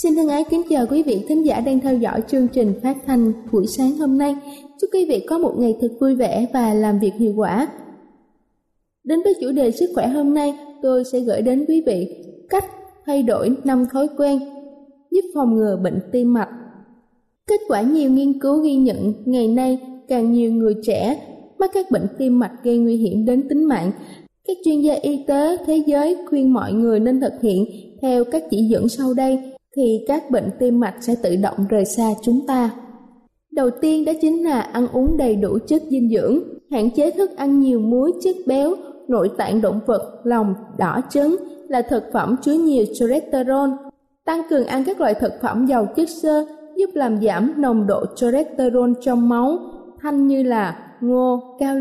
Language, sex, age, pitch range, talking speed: Vietnamese, female, 20-39, 230-290 Hz, 200 wpm